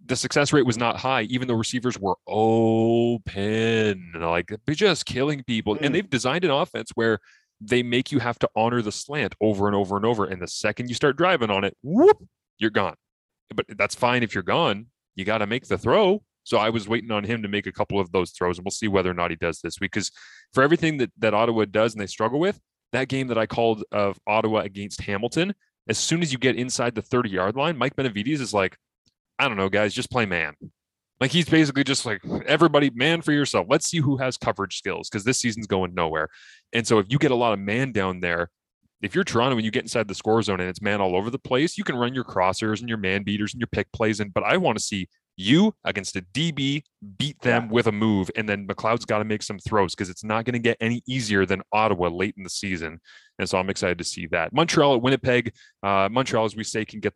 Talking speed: 245 wpm